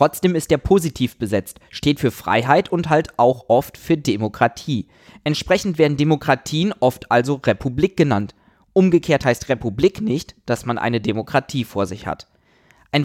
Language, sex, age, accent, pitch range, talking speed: German, male, 20-39, German, 120-180 Hz, 150 wpm